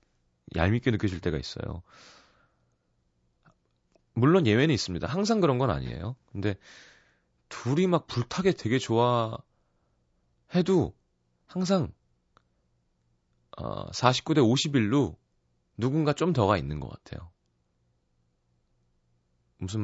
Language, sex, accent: Korean, male, native